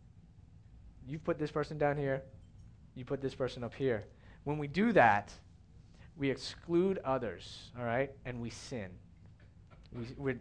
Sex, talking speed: male, 145 wpm